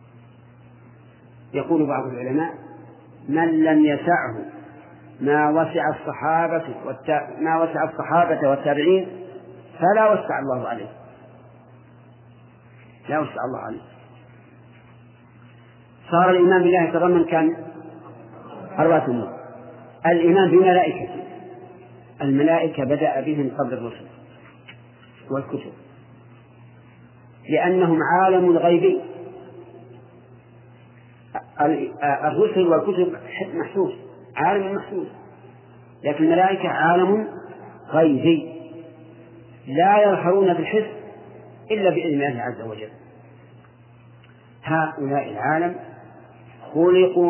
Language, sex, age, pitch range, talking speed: Arabic, male, 50-69, 120-170 Hz, 75 wpm